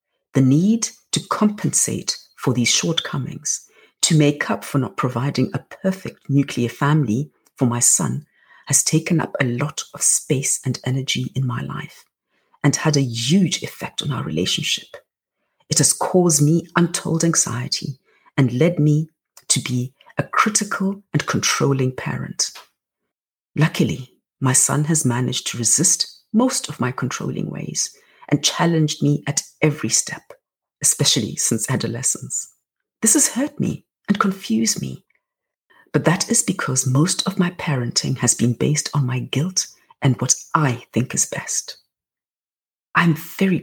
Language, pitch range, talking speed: English, 130-180 Hz, 145 wpm